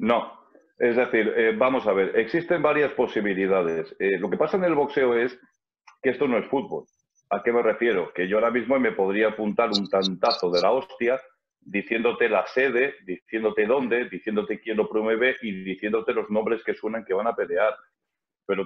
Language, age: Spanish, 40-59